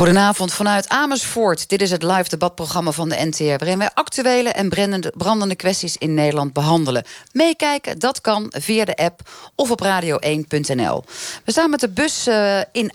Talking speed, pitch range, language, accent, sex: 160 wpm, 155-220 Hz, Dutch, Dutch, female